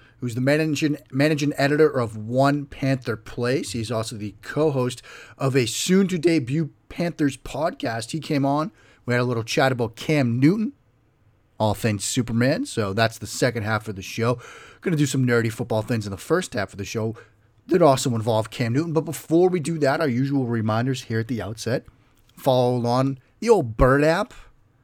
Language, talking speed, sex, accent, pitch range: English, 185 wpm, male, American, 115-140 Hz